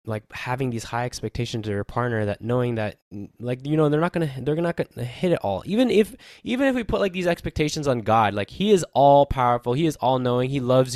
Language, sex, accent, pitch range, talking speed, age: English, male, American, 110-150 Hz, 250 wpm, 10-29